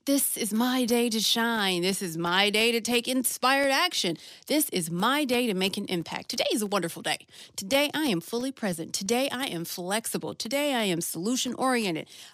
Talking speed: 195 wpm